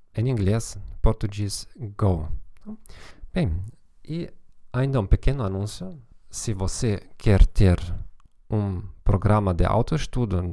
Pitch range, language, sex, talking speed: 95-115 Hz, Portuguese, male, 105 wpm